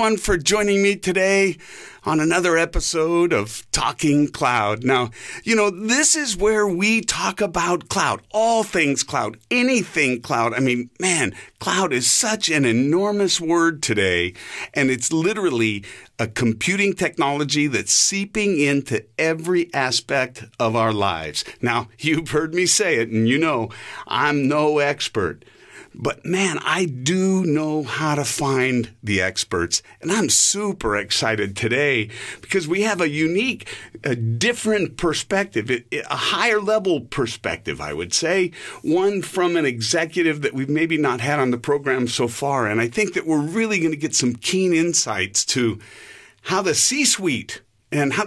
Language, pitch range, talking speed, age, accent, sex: English, 120-185 Hz, 150 wpm, 50-69, American, male